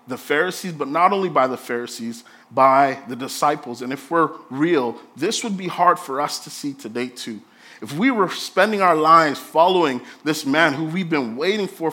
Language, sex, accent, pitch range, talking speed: English, male, American, 140-205 Hz, 195 wpm